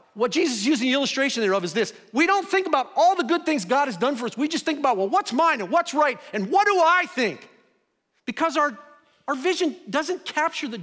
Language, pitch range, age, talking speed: English, 185-295 Hz, 50-69, 245 wpm